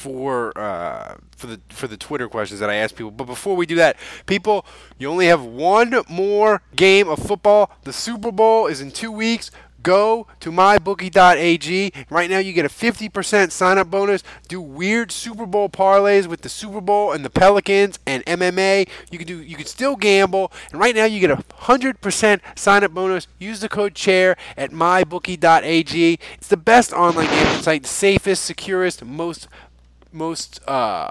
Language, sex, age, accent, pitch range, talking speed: English, male, 20-39, American, 140-195 Hz, 175 wpm